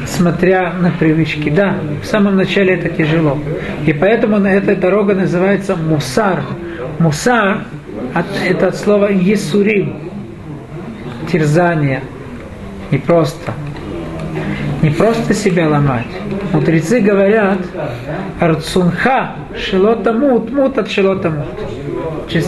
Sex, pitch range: male, 155-200 Hz